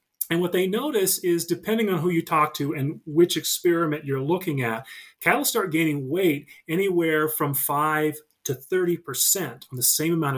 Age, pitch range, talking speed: 30-49, 140-175 Hz, 175 wpm